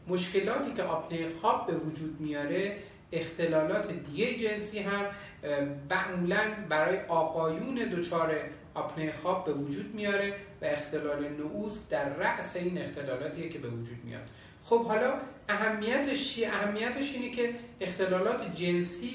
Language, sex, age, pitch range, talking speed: Persian, male, 40-59, 155-205 Hz, 120 wpm